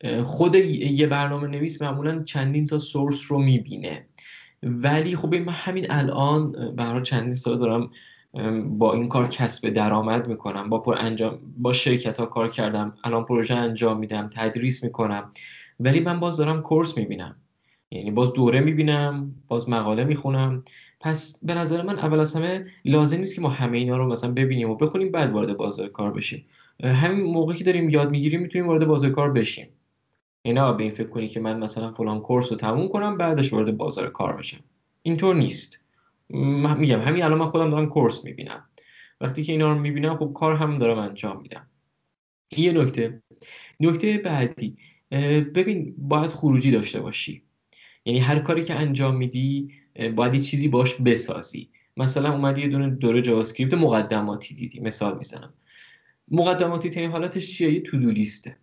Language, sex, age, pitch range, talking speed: Persian, male, 10-29, 115-155 Hz, 160 wpm